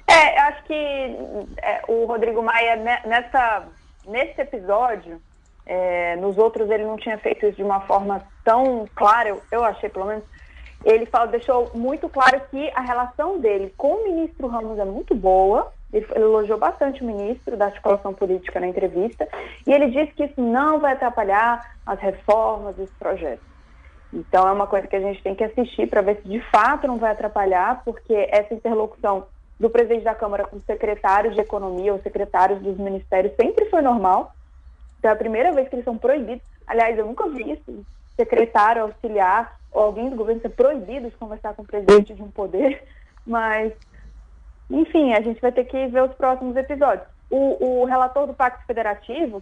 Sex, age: female, 20-39